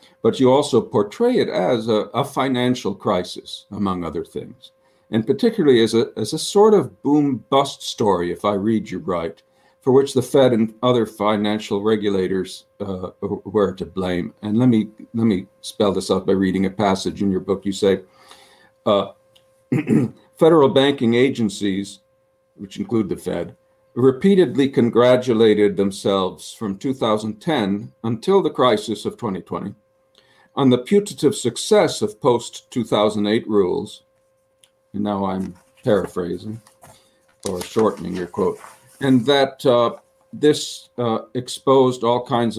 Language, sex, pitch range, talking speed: English, male, 105-135 Hz, 140 wpm